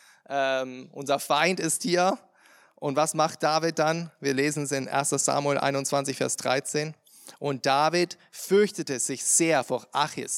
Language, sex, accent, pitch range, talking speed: German, male, German, 140-165 Hz, 150 wpm